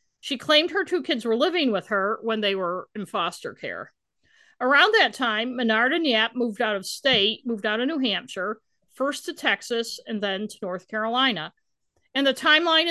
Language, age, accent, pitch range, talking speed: English, 50-69, American, 210-270 Hz, 190 wpm